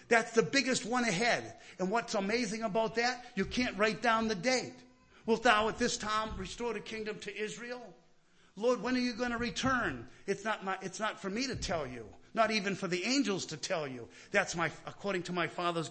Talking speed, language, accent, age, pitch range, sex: 210 wpm, English, American, 50-69, 185-245 Hz, male